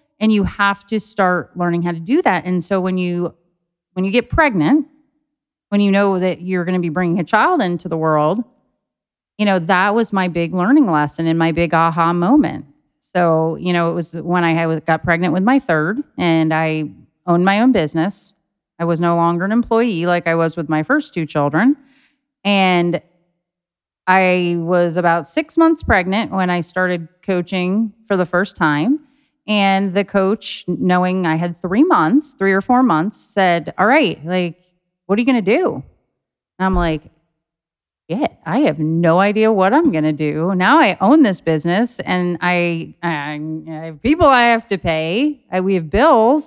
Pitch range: 170-210 Hz